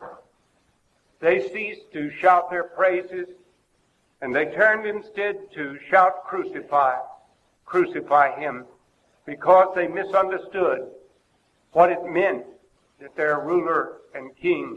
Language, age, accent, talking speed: English, 60-79, American, 105 wpm